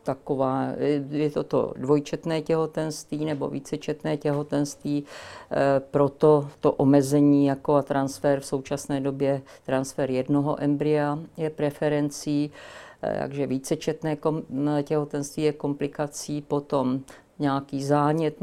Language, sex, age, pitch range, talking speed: Czech, female, 50-69, 140-150 Hz, 95 wpm